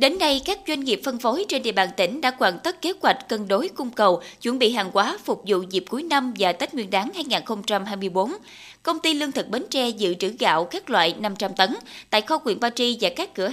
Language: Vietnamese